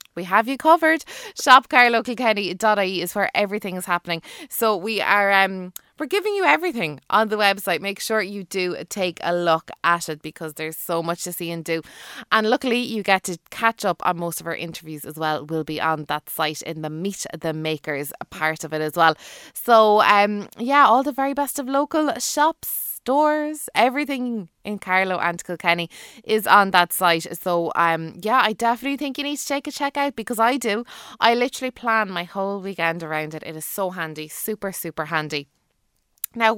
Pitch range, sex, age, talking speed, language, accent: 175-245 Hz, female, 20-39, 195 wpm, English, Irish